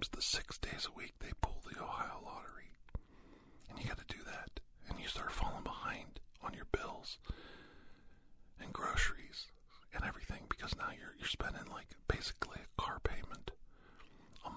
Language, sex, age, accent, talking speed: English, male, 50-69, American, 155 wpm